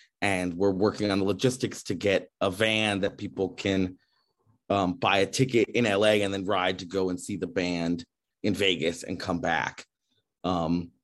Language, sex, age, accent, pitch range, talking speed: English, male, 30-49, American, 85-100 Hz, 185 wpm